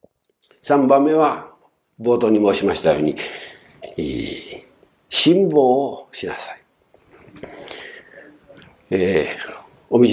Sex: male